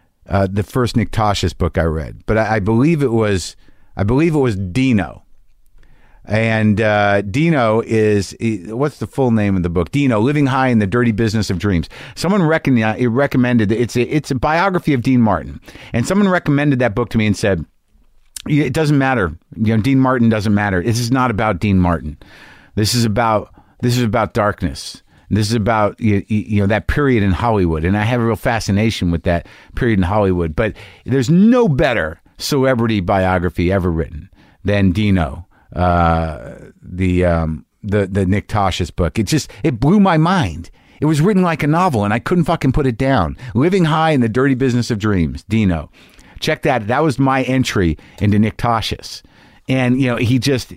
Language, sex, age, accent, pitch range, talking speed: English, male, 50-69, American, 95-130 Hz, 195 wpm